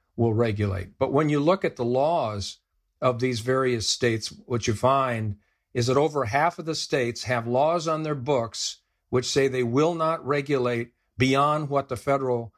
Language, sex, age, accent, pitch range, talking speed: English, male, 50-69, American, 110-140 Hz, 180 wpm